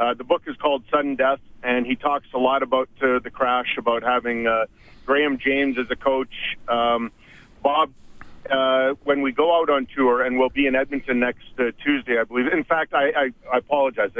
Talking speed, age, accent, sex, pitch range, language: 205 wpm, 40-59, American, male, 125-140 Hz, English